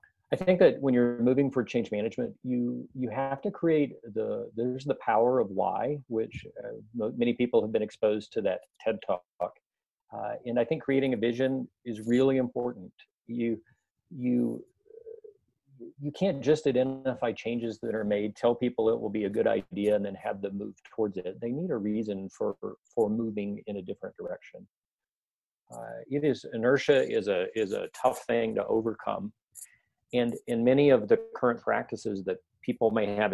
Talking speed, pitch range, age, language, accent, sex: 185 wpm, 110-175 Hz, 40-59, English, American, male